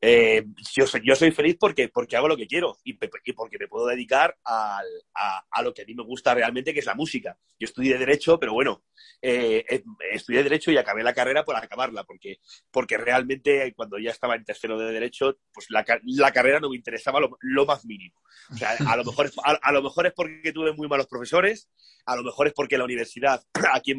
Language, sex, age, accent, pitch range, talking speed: Spanish, male, 30-49, Spanish, 120-160 Hz, 240 wpm